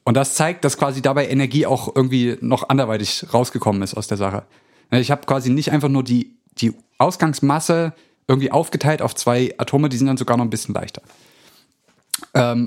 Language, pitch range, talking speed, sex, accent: German, 120-150 Hz, 185 wpm, male, German